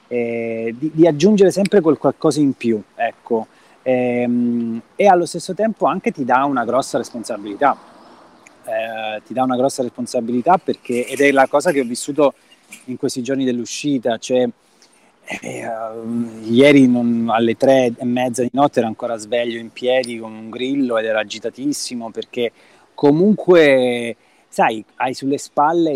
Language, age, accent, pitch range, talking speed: Italian, 20-39, native, 115-135 Hz, 155 wpm